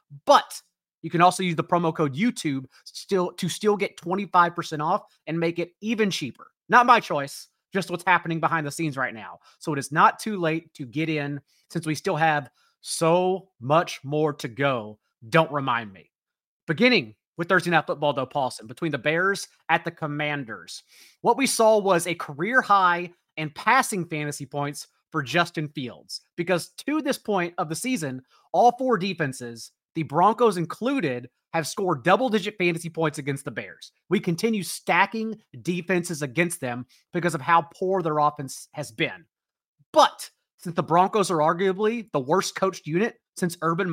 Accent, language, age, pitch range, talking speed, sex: American, English, 30-49, 150-195 Hz, 170 wpm, male